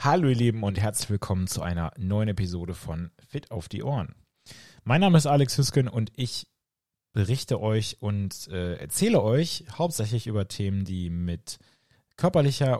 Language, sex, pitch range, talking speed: German, male, 100-130 Hz, 160 wpm